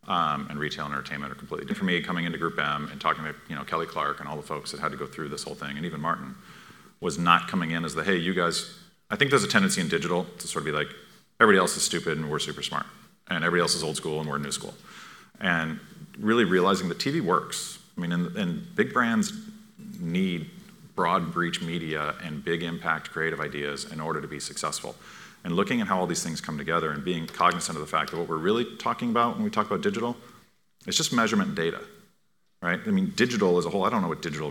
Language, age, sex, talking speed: English, 40-59, male, 245 wpm